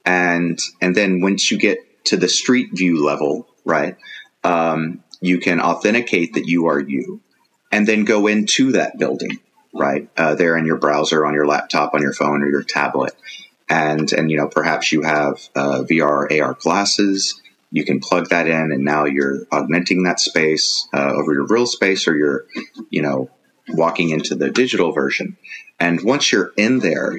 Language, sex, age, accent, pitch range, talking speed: English, male, 30-49, American, 75-90 Hz, 180 wpm